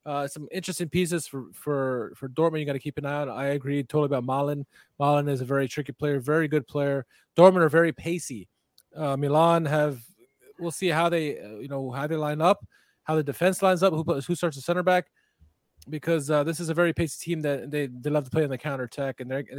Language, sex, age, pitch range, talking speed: English, male, 20-39, 140-170 Hz, 235 wpm